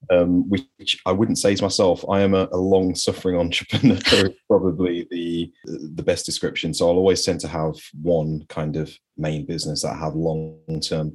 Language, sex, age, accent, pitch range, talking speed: English, male, 30-49, British, 75-90 Hz, 190 wpm